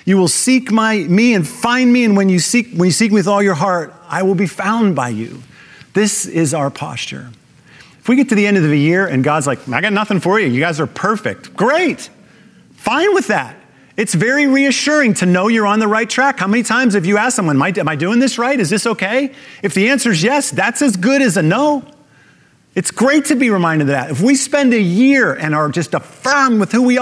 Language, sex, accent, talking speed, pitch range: English, male, American, 250 wpm, 160-235 Hz